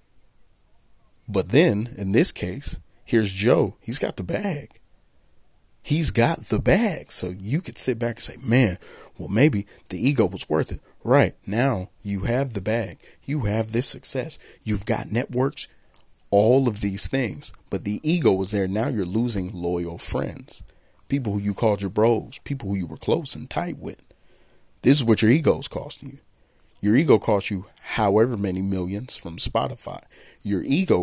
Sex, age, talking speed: male, 40-59, 170 wpm